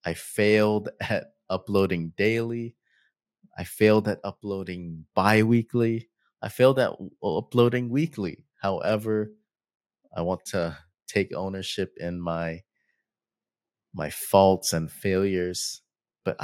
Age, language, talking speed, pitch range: 30-49, English, 105 wpm, 90-110 Hz